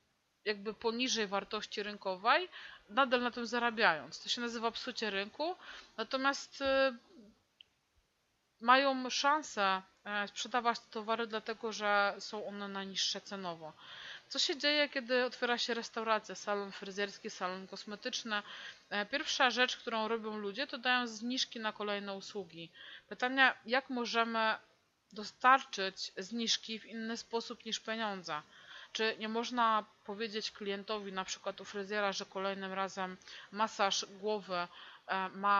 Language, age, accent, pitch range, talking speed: English, 30-49, Polish, 200-240 Hz, 120 wpm